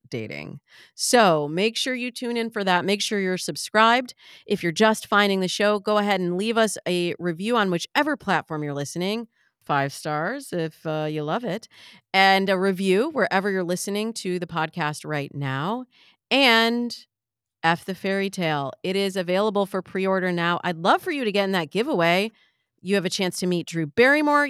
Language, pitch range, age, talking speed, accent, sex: English, 160-220 Hz, 30-49, 190 wpm, American, female